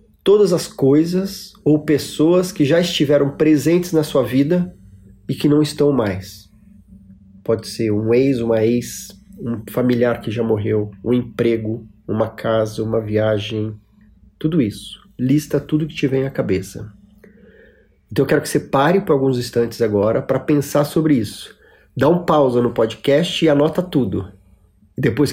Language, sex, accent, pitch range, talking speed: Portuguese, male, Brazilian, 100-145 Hz, 155 wpm